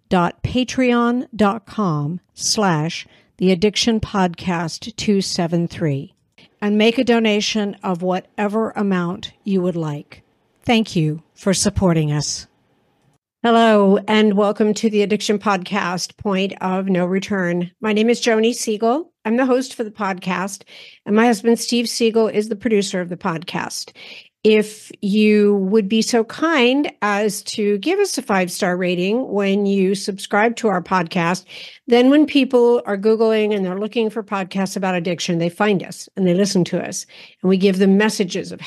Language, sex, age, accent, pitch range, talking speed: English, female, 60-79, American, 185-220 Hz, 155 wpm